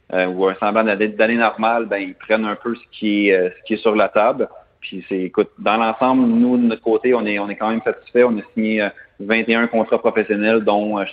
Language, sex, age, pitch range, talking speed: French, male, 30-49, 105-120 Hz, 230 wpm